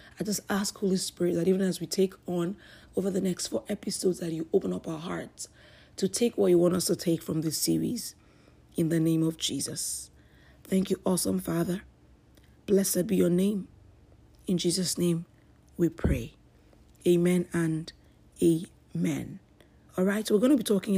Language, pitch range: English, 160-195 Hz